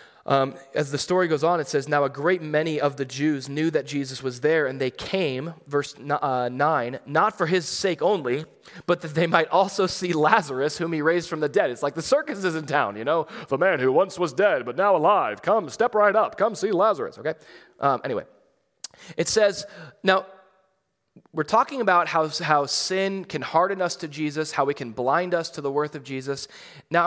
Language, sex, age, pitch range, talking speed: English, male, 20-39, 150-210 Hz, 215 wpm